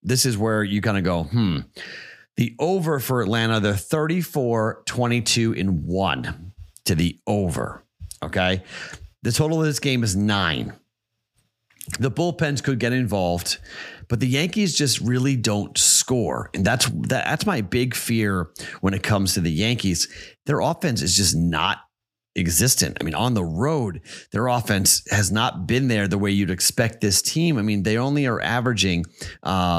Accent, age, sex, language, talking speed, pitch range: American, 30-49, male, English, 165 wpm, 90-120 Hz